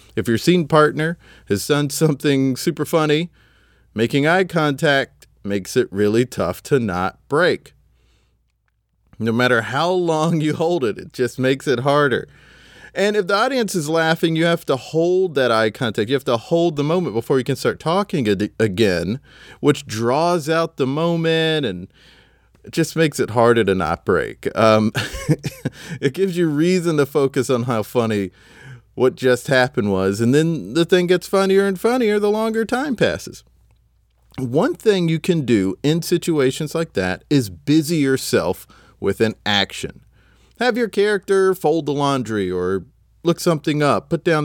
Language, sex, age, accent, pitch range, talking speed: English, male, 30-49, American, 120-170 Hz, 165 wpm